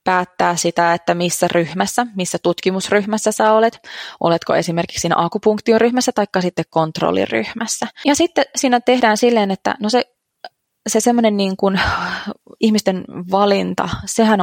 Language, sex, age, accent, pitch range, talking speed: Finnish, female, 20-39, native, 175-230 Hz, 135 wpm